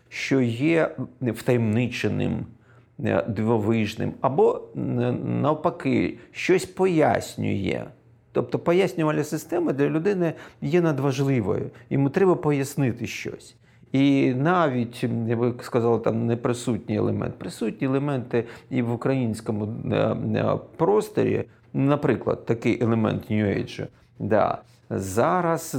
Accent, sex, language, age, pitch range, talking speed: native, male, Ukrainian, 40-59, 115-140 Hz, 85 wpm